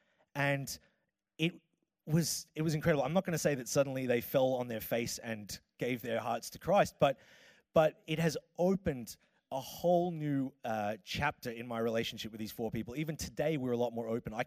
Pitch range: 110-150 Hz